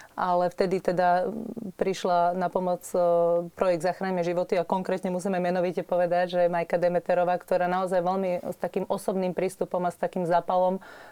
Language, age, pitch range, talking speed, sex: Slovak, 30-49, 170-190 Hz, 150 wpm, female